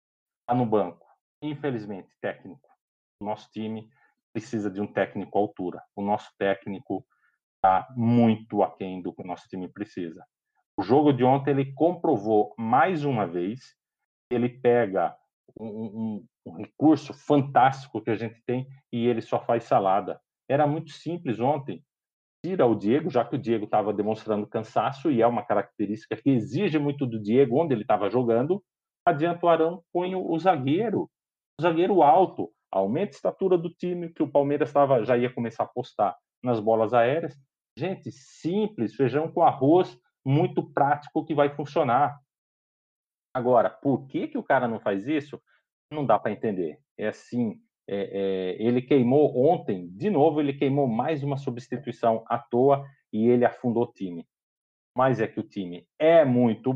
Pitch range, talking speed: 110-145 Hz, 160 wpm